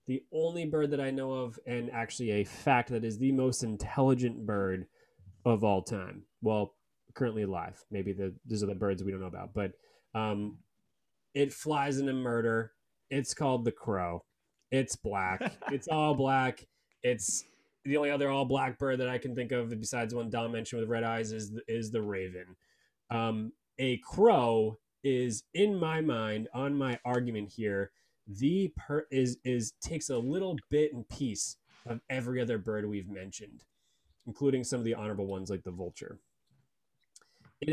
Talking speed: 175 wpm